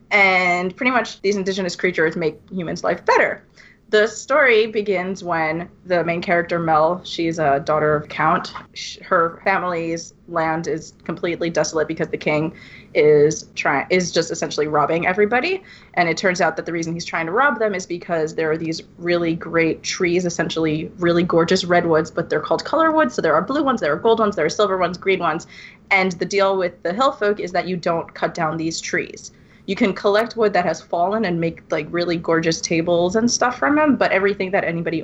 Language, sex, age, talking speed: English, female, 20-39, 205 wpm